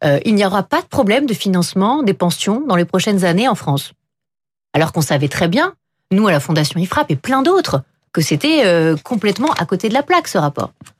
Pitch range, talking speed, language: 160-225 Hz, 215 wpm, French